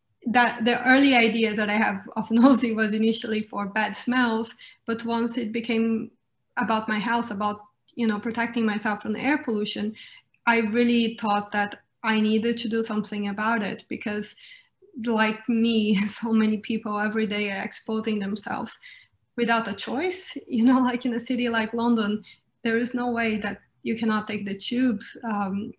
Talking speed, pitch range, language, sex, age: 170 wpm, 210-235 Hz, English, female, 20-39